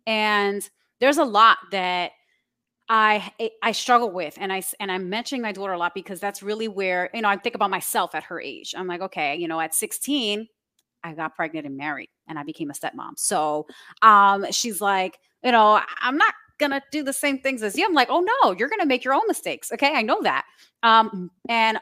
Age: 30-49